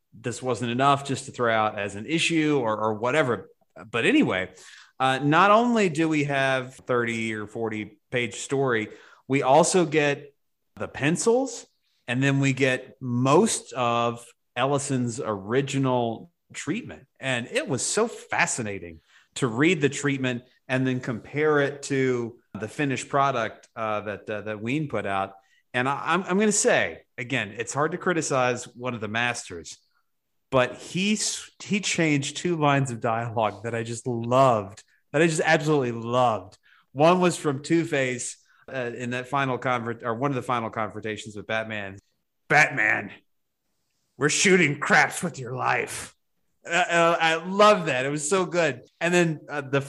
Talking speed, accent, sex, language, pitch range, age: 160 wpm, American, male, English, 120-165 Hz, 30-49